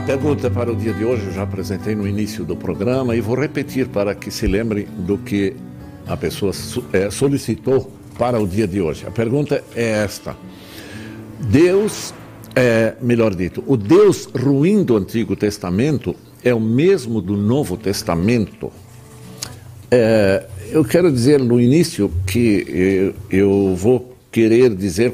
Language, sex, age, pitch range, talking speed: Portuguese, male, 60-79, 100-130 Hz, 145 wpm